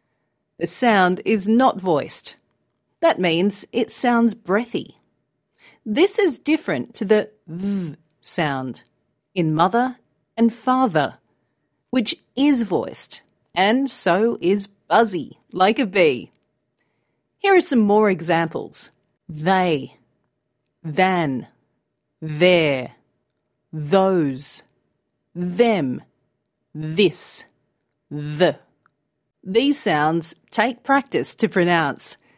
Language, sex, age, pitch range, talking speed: Arabic, female, 40-59, 165-240 Hz, 90 wpm